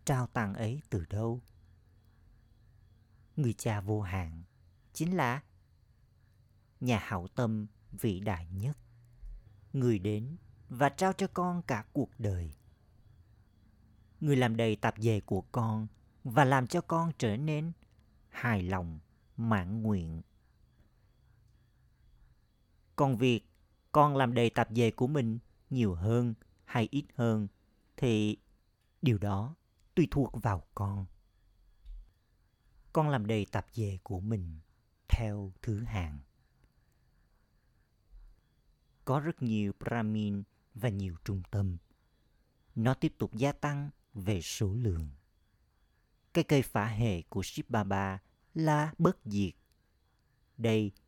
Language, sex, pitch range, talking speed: Vietnamese, male, 100-125 Hz, 115 wpm